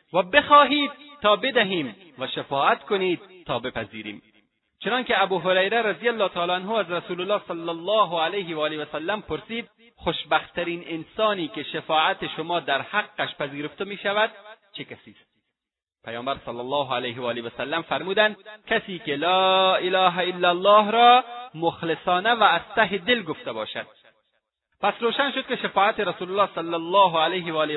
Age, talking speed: 30-49, 145 wpm